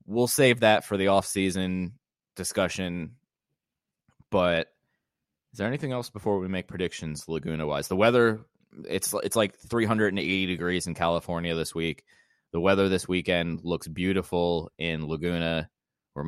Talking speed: 135 wpm